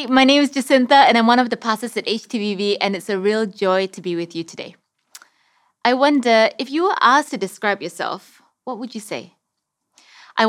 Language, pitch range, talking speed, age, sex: English, 190-255 Hz, 205 wpm, 20-39, female